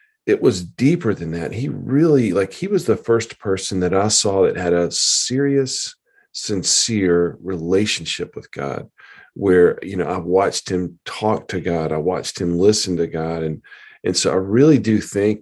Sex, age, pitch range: male, 40-59, 85-105 Hz